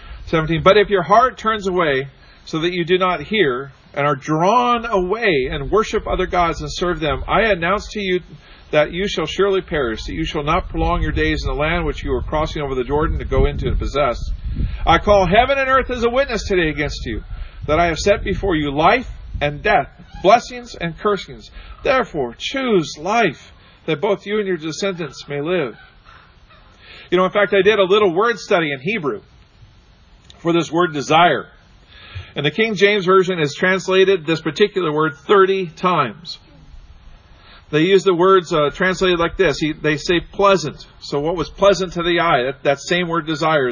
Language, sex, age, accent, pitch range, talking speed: English, male, 40-59, American, 145-190 Hz, 195 wpm